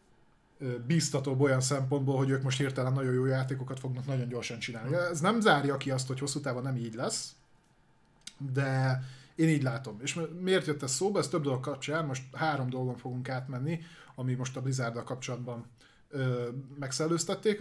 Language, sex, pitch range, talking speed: Hungarian, male, 130-150 Hz, 165 wpm